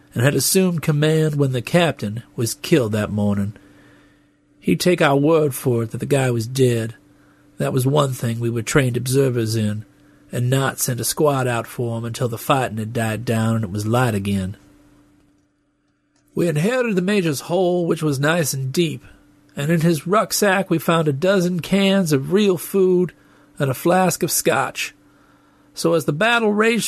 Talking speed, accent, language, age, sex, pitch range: 185 wpm, American, English, 40-59, male, 125-180 Hz